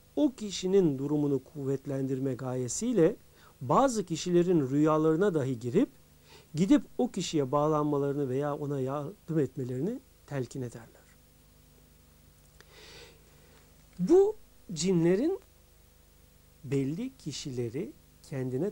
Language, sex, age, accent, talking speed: Turkish, male, 60-79, native, 80 wpm